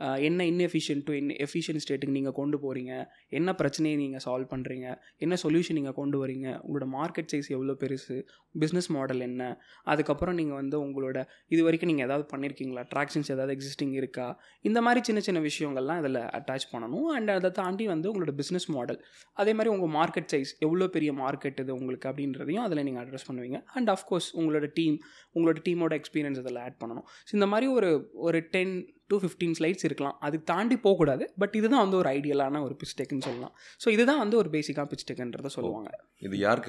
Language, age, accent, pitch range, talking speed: Tamil, 20-39, native, 135-180 Hz, 175 wpm